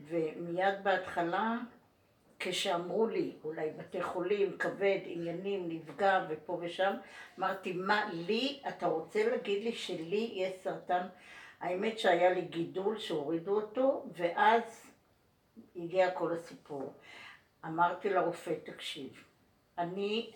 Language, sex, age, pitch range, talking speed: Hebrew, female, 60-79, 170-210 Hz, 105 wpm